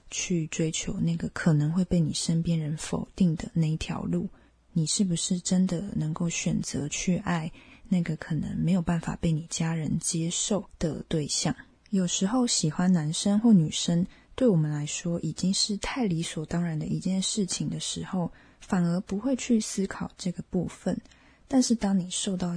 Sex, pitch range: female, 165-205 Hz